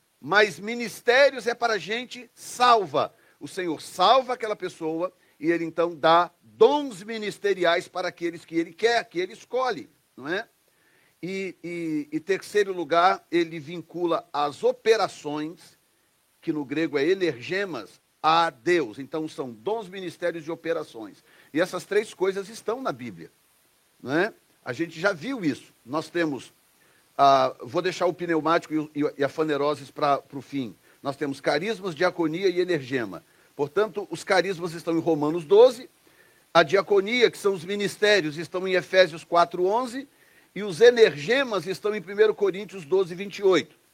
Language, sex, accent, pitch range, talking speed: Portuguese, male, Brazilian, 165-205 Hz, 150 wpm